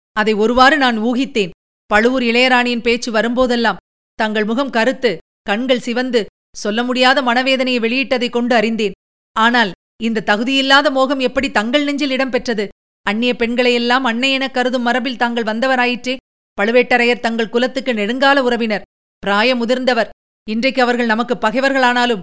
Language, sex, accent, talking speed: Tamil, female, native, 120 wpm